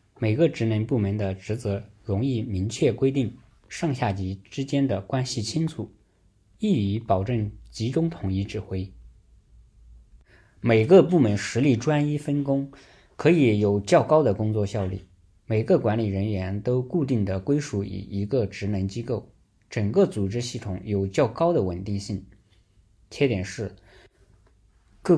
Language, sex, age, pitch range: Chinese, male, 20-39, 100-125 Hz